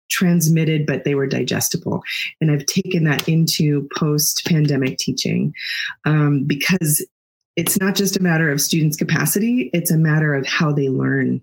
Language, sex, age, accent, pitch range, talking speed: English, female, 20-39, American, 145-180 Hz, 150 wpm